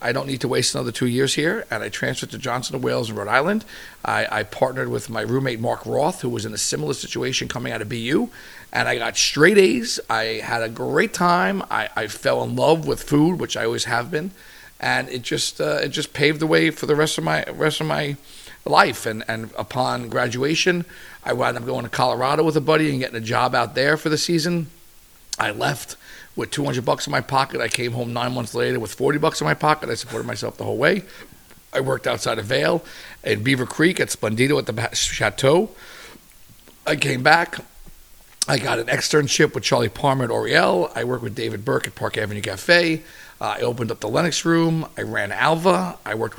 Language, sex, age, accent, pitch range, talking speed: English, male, 40-59, American, 120-155 Hz, 220 wpm